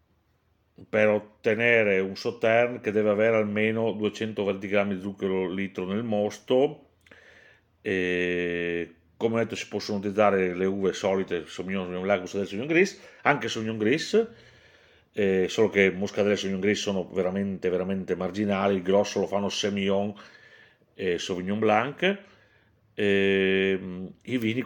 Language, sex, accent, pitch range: Italian, male, native, 95-115 Hz